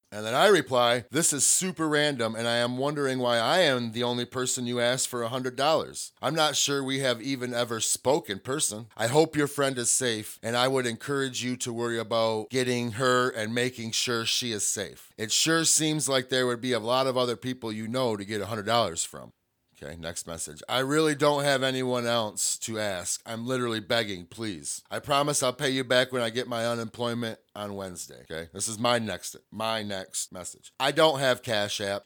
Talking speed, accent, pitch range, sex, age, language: 210 wpm, American, 110-130 Hz, male, 30-49, English